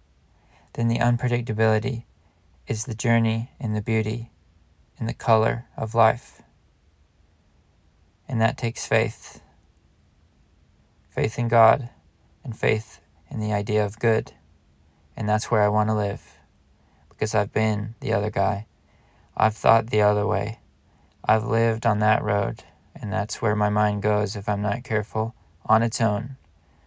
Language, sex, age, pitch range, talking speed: English, male, 20-39, 80-110 Hz, 145 wpm